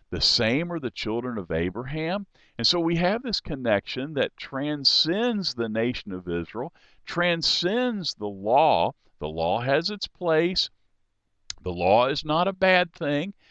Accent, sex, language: American, male, English